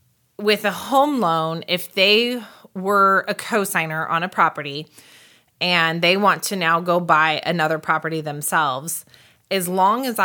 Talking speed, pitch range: 145 wpm, 160-190 Hz